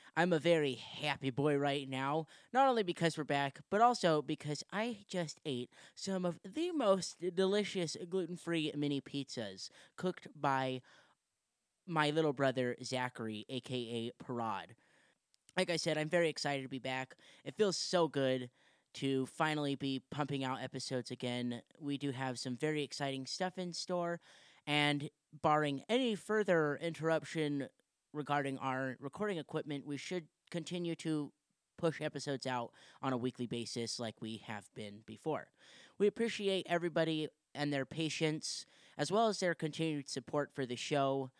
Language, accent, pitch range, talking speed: English, American, 130-165 Hz, 150 wpm